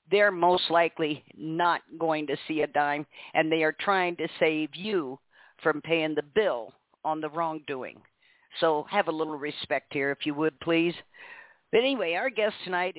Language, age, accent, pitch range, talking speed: English, 50-69, American, 155-185 Hz, 175 wpm